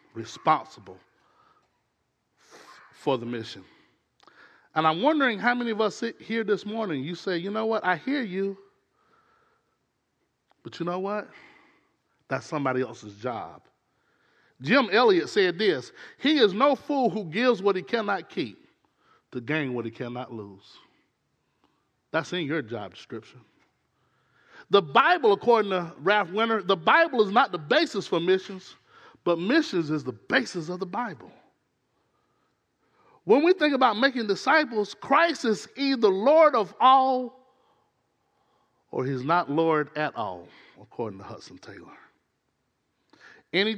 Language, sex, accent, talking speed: English, male, American, 140 wpm